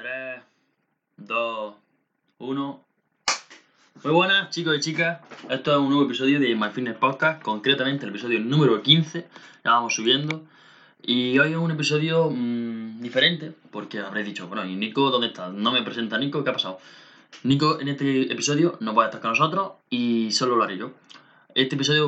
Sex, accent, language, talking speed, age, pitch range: male, Spanish, Spanish, 170 wpm, 20-39, 115-145 Hz